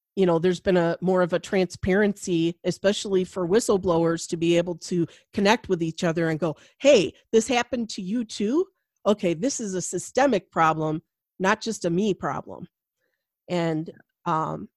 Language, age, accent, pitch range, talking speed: English, 40-59, American, 175-225 Hz, 165 wpm